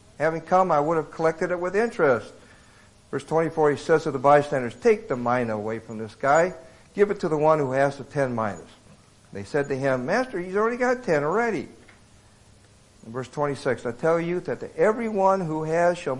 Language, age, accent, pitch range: English, 60-79, American, 110-155 Hz